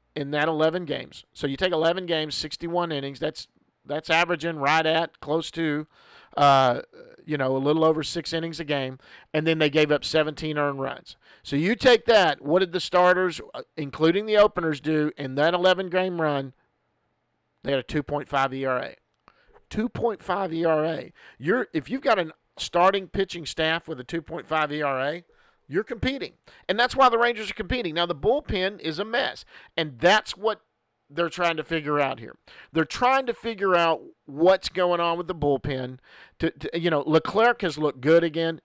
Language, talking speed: English, 180 wpm